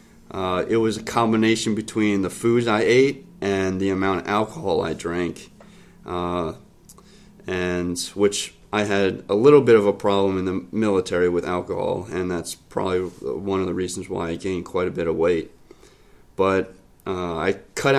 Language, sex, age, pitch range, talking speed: English, male, 30-49, 90-110 Hz, 175 wpm